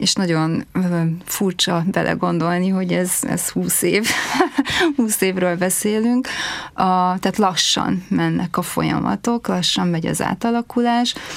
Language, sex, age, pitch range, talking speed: Hungarian, female, 30-49, 165-195 Hz, 110 wpm